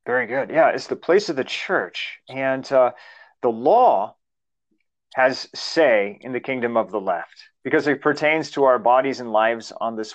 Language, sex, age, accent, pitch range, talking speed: English, male, 30-49, American, 120-150 Hz, 185 wpm